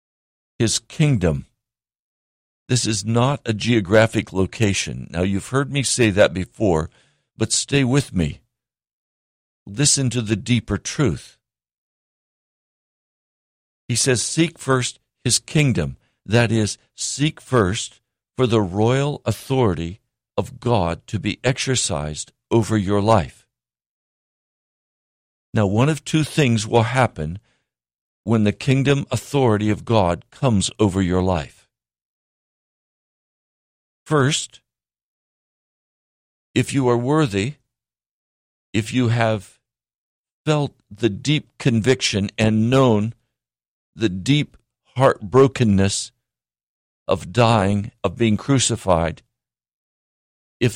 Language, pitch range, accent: English, 85-125 Hz, American